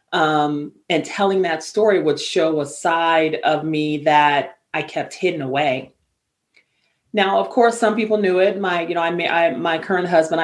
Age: 30-49